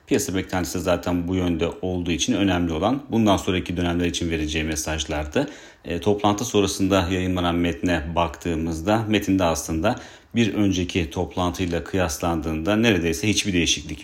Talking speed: 130 wpm